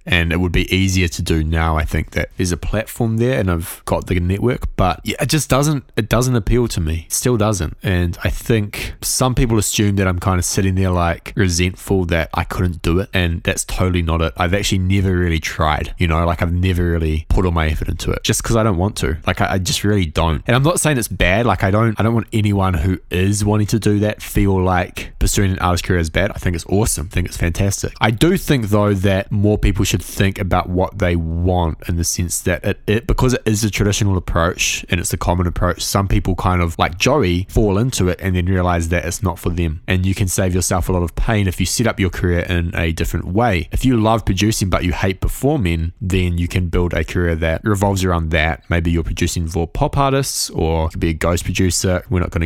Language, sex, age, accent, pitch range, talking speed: English, male, 20-39, Australian, 85-105 Hz, 250 wpm